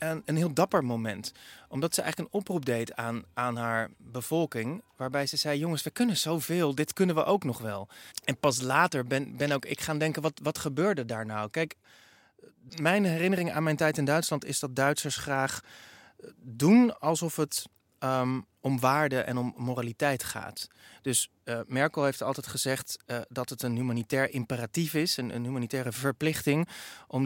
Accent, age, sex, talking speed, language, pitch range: Dutch, 20-39, male, 175 wpm, Dutch, 120-155 Hz